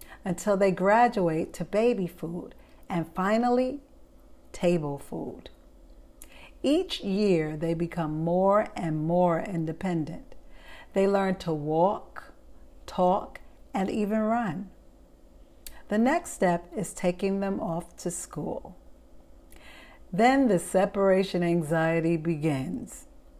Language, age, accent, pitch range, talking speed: English, 50-69, American, 165-215 Hz, 105 wpm